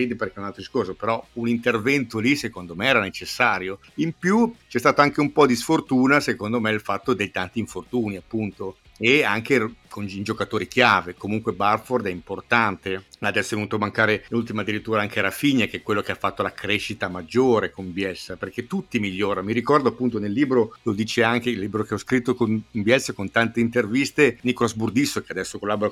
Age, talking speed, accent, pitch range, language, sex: 50-69, 200 wpm, native, 100-125 Hz, Italian, male